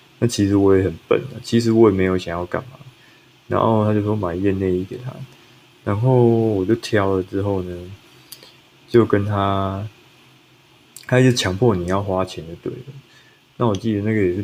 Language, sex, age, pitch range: Chinese, male, 20-39, 95-120 Hz